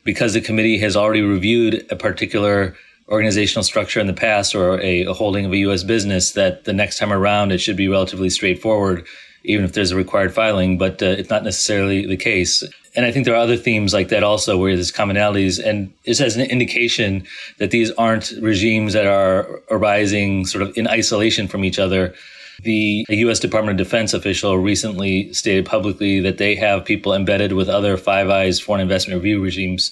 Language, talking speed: English, 195 wpm